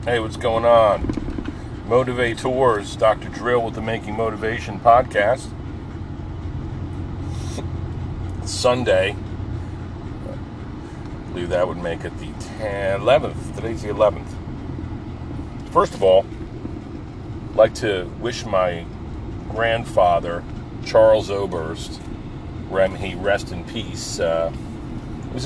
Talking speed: 105 wpm